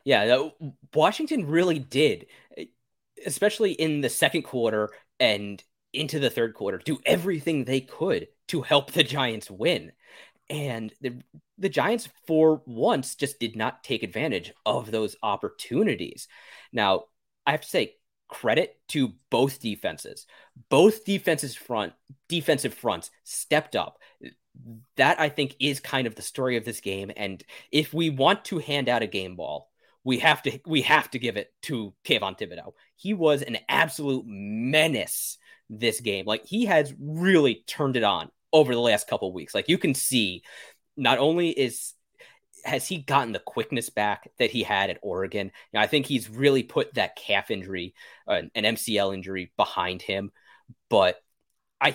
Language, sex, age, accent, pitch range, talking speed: English, male, 20-39, American, 110-155 Hz, 165 wpm